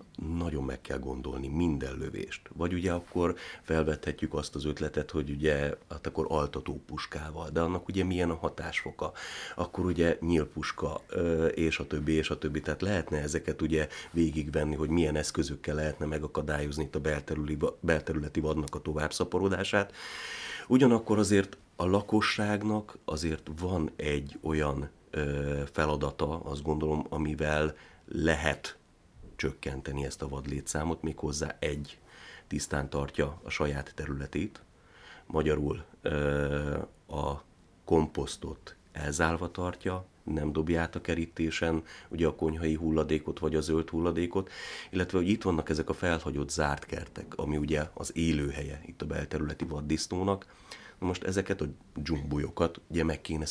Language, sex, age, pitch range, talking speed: Hungarian, male, 30-49, 75-85 Hz, 130 wpm